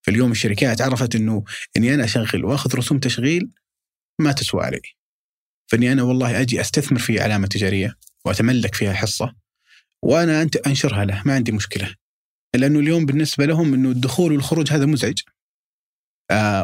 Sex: male